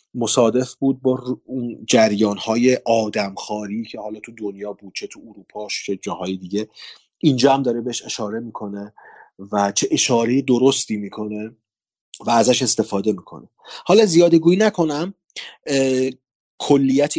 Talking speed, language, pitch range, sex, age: 125 wpm, Persian, 110-145 Hz, male, 30-49